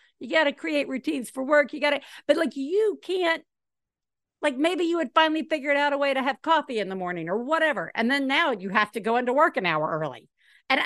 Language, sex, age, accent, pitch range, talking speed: English, female, 50-69, American, 205-280 Hz, 245 wpm